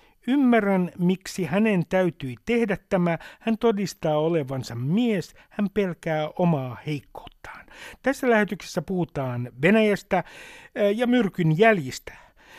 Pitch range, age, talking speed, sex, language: 150-205 Hz, 60-79, 100 wpm, male, Finnish